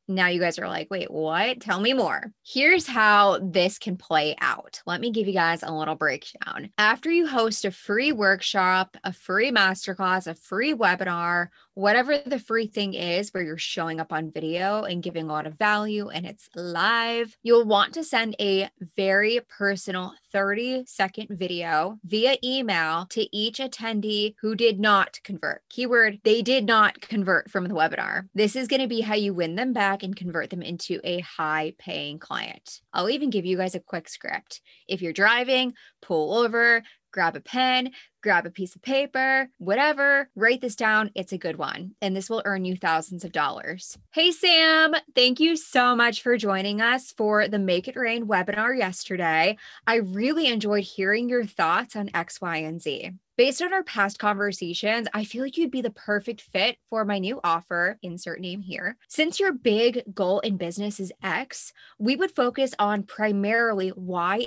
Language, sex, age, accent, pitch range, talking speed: English, female, 20-39, American, 185-235 Hz, 185 wpm